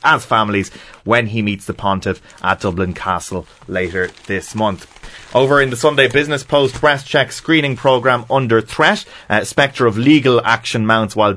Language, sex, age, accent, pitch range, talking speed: English, male, 30-49, Irish, 100-120 Hz, 170 wpm